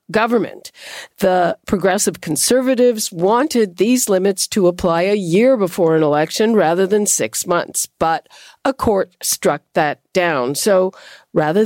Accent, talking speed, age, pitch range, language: American, 135 wpm, 50-69, 170-230 Hz, English